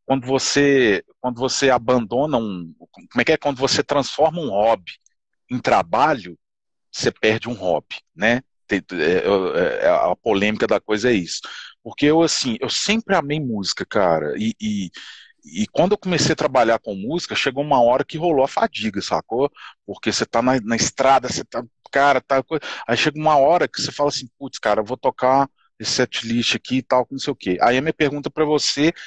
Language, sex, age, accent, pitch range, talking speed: Portuguese, male, 40-59, Brazilian, 120-160 Hz, 185 wpm